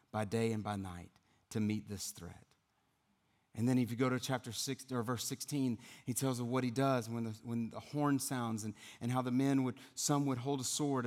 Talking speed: 235 wpm